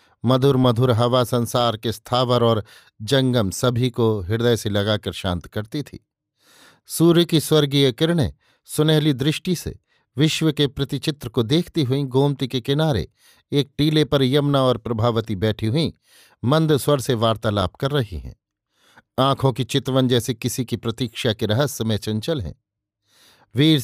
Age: 50-69